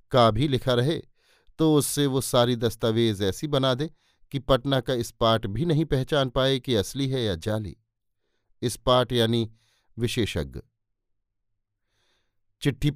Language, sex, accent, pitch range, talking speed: Hindi, male, native, 110-145 Hz, 140 wpm